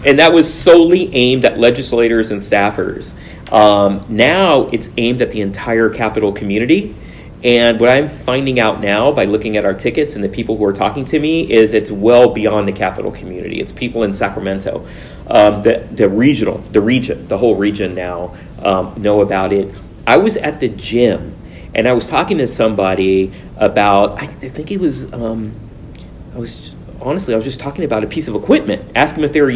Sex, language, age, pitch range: male, English, 40-59, 105-135 Hz